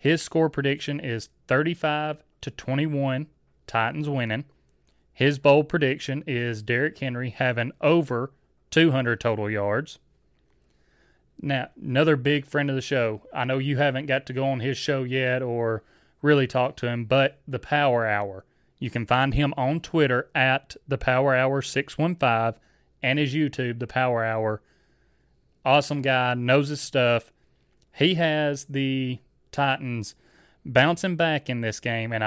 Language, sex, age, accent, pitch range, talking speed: English, male, 30-49, American, 120-145 Hz, 145 wpm